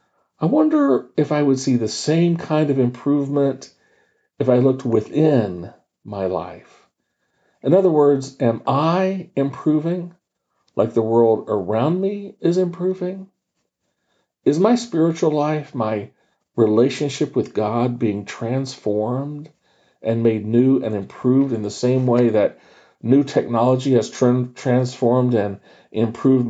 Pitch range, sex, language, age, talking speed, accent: 115-155 Hz, male, English, 50-69, 125 wpm, American